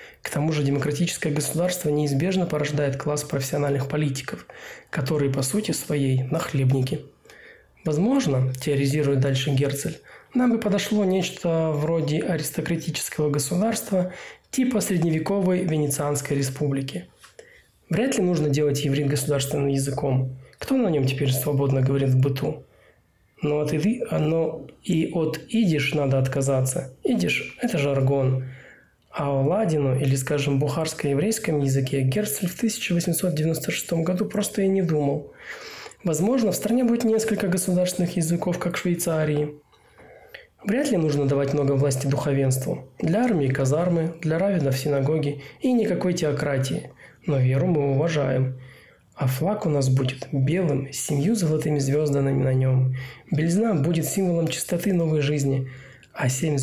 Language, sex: Russian, male